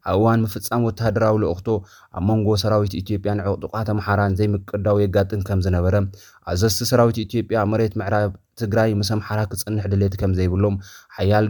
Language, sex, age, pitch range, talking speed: Amharic, male, 30-49, 95-110 Hz, 130 wpm